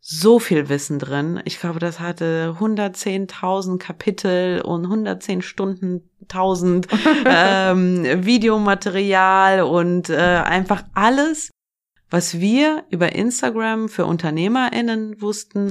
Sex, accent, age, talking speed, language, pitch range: female, German, 30-49, 105 wpm, German, 180-220 Hz